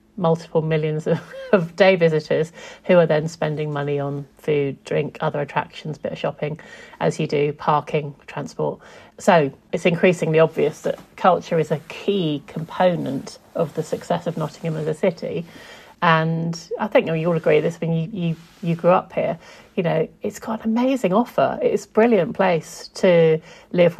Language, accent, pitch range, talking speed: English, British, 165-200 Hz, 175 wpm